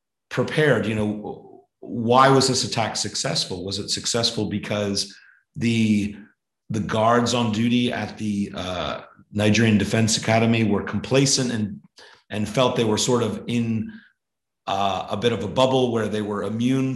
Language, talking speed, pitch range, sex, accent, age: English, 150 wpm, 105-120 Hz, male, American, 40-59